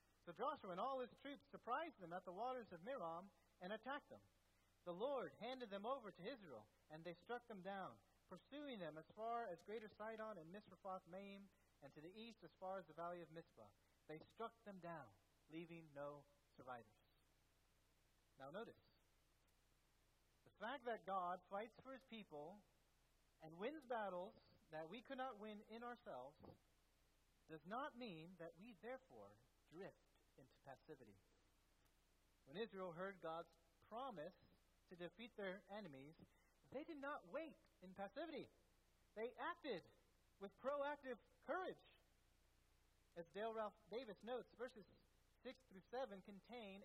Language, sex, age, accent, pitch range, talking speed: English, male, 40-59, American, 150-230 Hz, 145 wpm